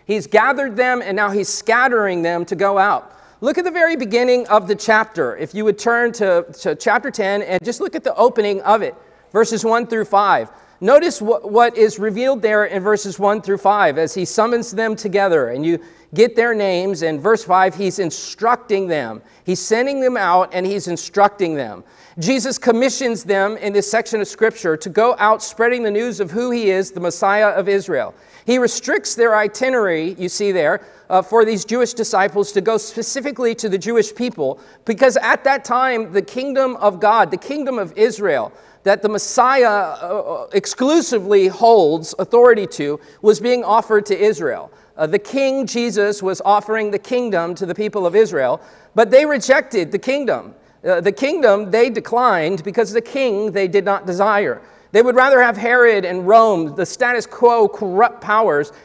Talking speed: 185 wpm